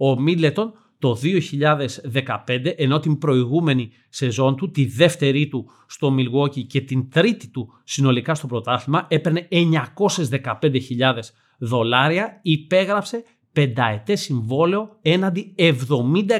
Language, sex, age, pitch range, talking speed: Greek, male, 30-49, 130-170 Hz, 105 wpm